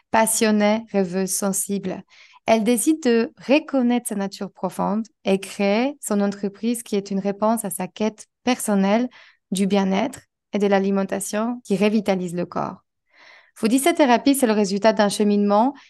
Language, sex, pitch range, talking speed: French, female, 195-225 Hz, 145 wpm